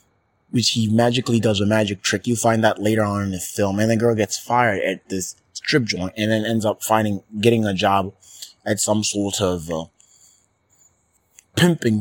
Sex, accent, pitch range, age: male, American, 100-120 Hz, 30-49